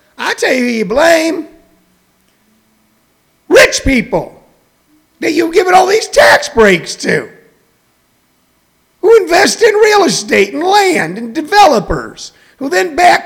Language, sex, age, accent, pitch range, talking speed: English, male, 50-69, American, 230-360 Hz, 125 wpm